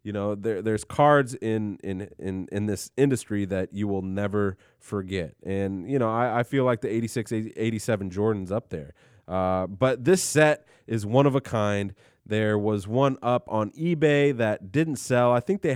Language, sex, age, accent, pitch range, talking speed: English, male, 30-49, American, 95-125 Hz, 190 wpm